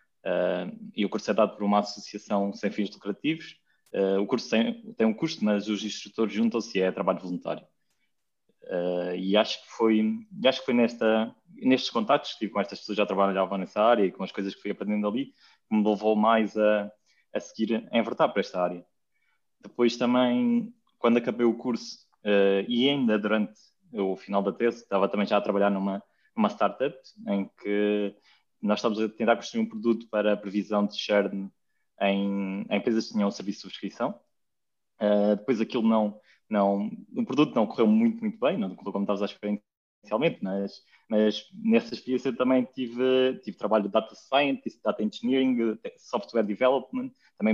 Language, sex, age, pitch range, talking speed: Portuguese, male, 20-39, 100-120 Hz, 185 wpm